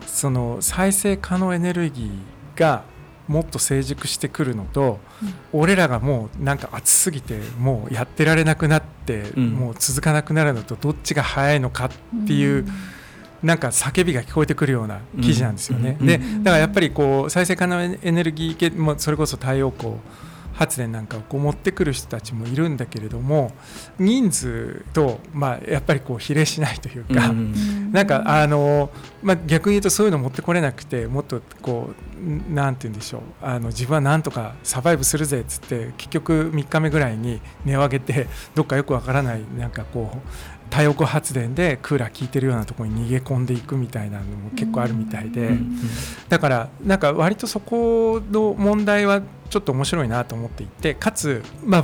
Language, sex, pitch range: Japanese, male, 120-160 Hz